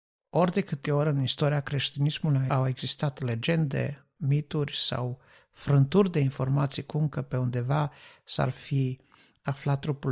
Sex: male